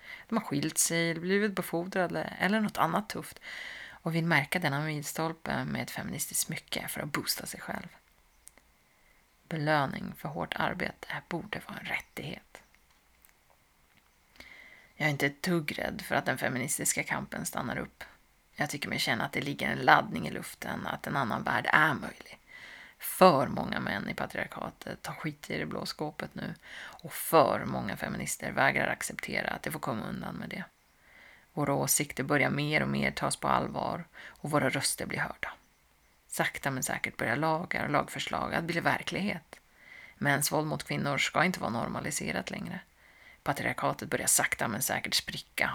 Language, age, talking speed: Swedish, 30-49, 165 wpm